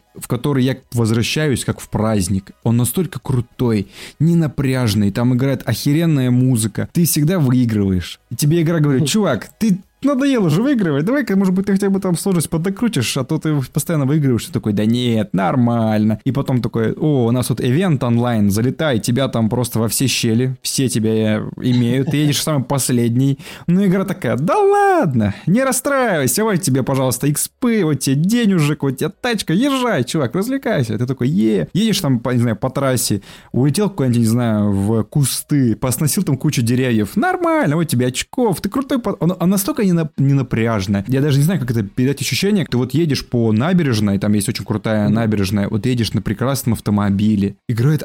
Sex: male